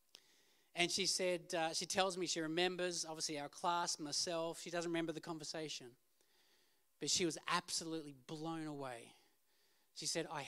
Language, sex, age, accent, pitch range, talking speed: English, male, 30-49, Australian, 155-220 Hz, 155 wpm